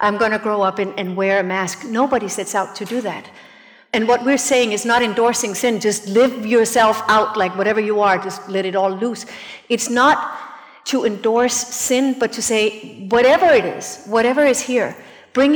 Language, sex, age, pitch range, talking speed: English, female, 50-69, 205-245 Hz, 195 wpm